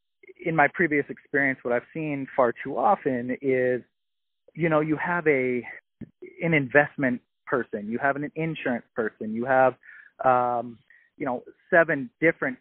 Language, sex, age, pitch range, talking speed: English, male, 20-39, 120-145 Hz, 150 wpm